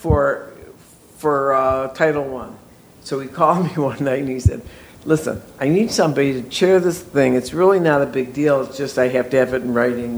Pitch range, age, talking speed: 120-150 Hz, 60-79, 220 wpm